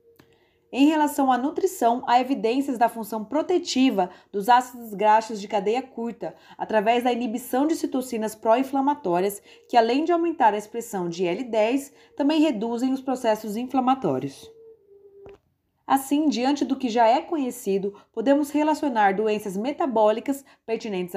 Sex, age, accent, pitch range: female, 20-39, Brazilian, 200-275 Hz